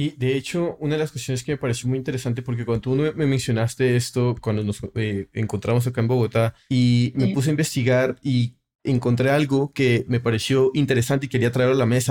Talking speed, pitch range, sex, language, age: 215 wpm, 125-160 Hz, male, Spanish, 30-49